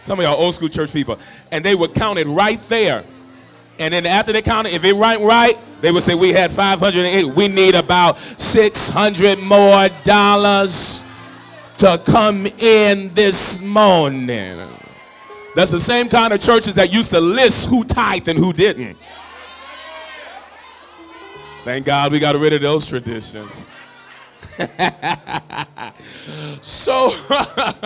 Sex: male